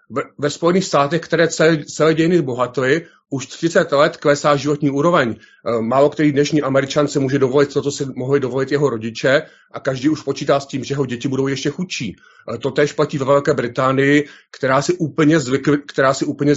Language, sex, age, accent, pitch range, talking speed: Czech, male, 40-59, native, 135-150 Hz, 180 wpm